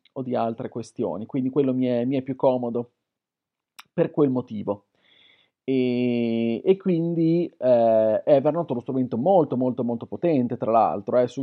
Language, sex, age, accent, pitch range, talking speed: Italian, male, 40-59, native, 125-160 Hz, 160 wpm